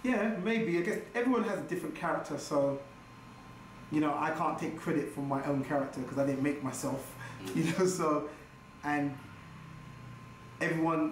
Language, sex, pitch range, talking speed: English, male, 140-165 Hz, 160 wpm